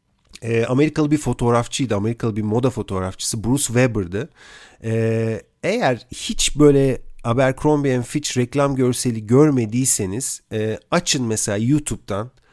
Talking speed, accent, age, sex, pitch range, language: 95 wpm, native, 40-59, male, 115-145 Hz, Turkish